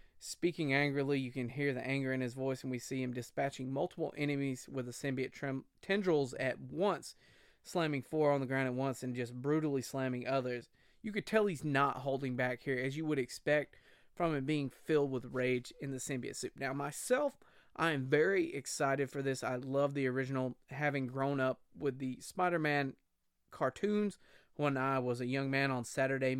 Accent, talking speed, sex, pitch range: American, 195 wpm, male, 130-150 Hz